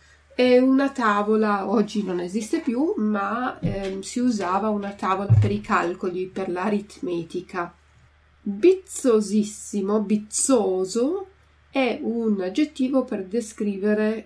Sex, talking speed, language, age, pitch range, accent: female, 105 wpm, Italian, 30-49, 185-230 Hz, native